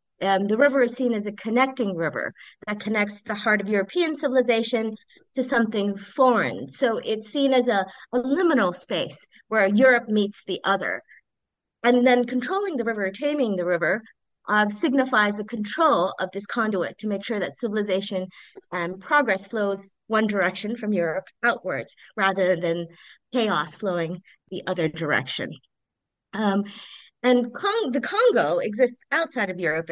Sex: female